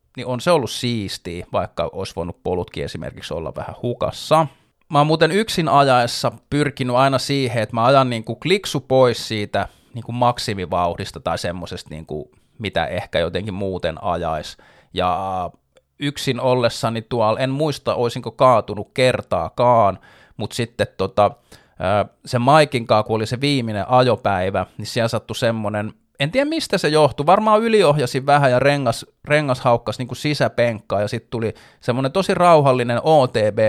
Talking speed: 145 wpm